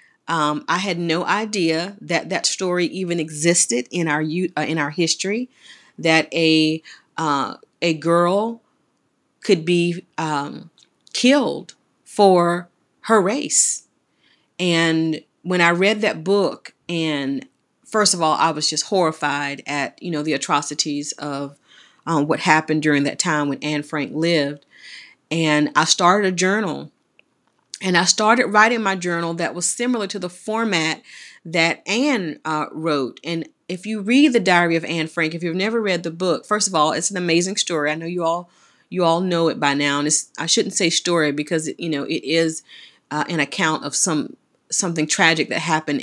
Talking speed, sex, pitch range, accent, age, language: 170 wpm, female, 155-200 Hz, American, 40-59, English